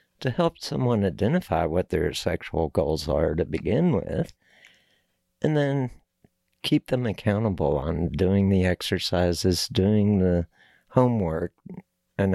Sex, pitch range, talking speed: male, 90-125 Hz, 120 wpm